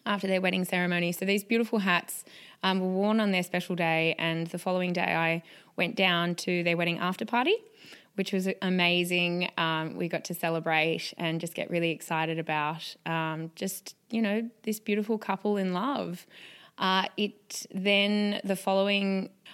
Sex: female